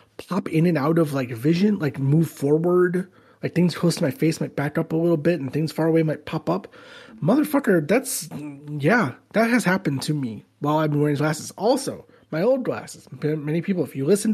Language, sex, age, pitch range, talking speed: English, male, 30-49, 135-195 Hz, 215 wpm